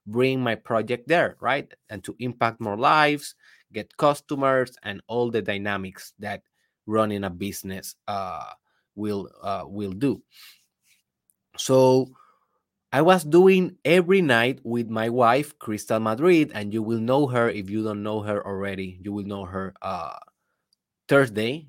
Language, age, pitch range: Spanish, 20-39, 105-135 Hz